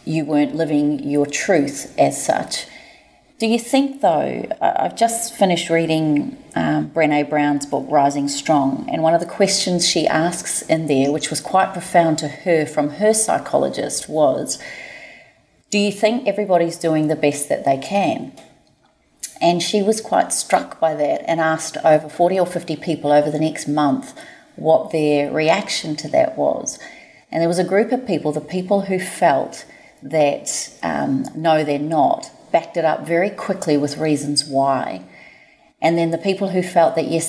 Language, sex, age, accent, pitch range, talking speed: English, female, 30-49, Australian, 150-200 Hz, 170 wpm